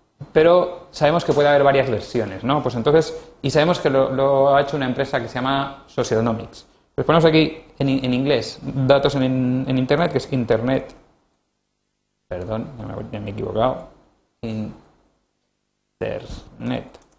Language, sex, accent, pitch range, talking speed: Spanish, male, Spanish, 115-145 Hz, 145 wpm